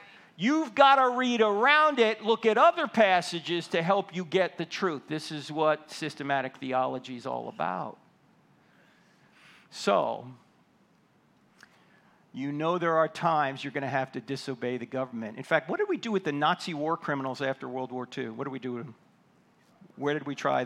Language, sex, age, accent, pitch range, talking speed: English, male, 50-69, American, 140-195 Hz, 185 wpm